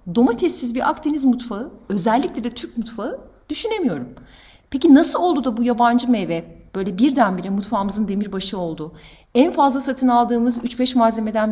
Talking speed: 140 wpm